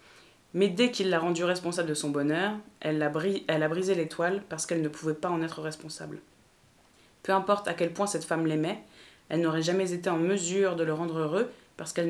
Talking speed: 205 wpm